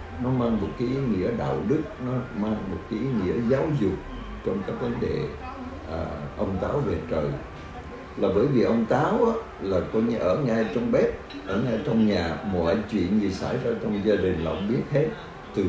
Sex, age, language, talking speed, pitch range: male, 60-79, Vietnamese, 210 wpm, 80-110 Hz